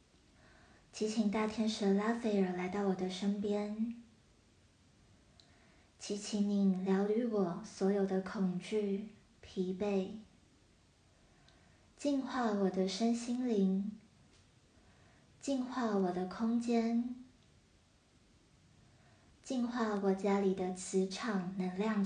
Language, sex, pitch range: Chinese, male, 185-215 Hz